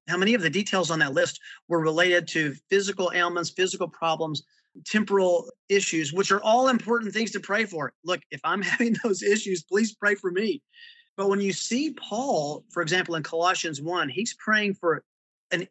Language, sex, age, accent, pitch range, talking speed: English, male, 30-49, American, 165-205 Hz, 185 wpm